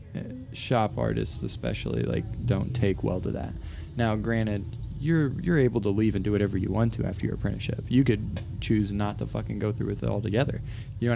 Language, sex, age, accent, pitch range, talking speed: English, male, 20-39, American, 100-115 Hz, 205 wpm